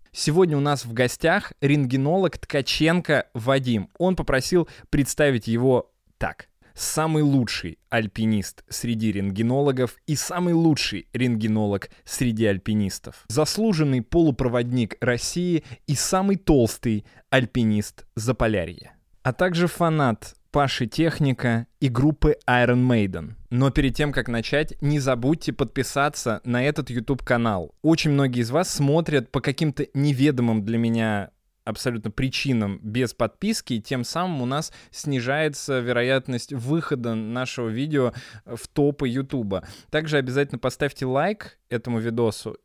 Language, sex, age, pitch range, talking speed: Russian, male, 20-39, 115-150 Hz, 120 wpm